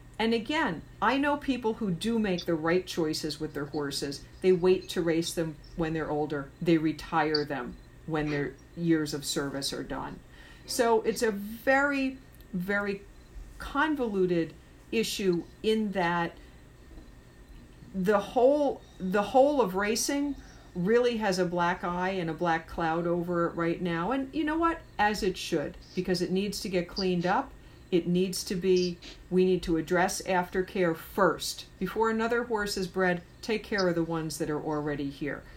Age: 50-69